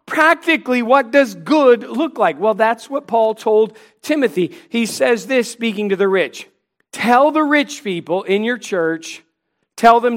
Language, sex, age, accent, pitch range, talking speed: English, male, 40-59, American, 190-250 Hz, 165 wpm